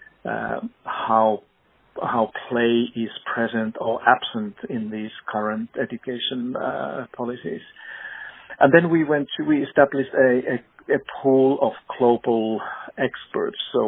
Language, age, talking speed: English, 50-69, 125 wpm